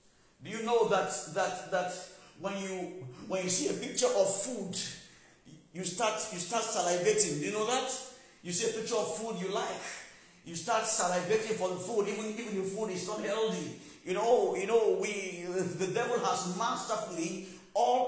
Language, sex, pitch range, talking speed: English, male, 190-245 Hz, 190 wpm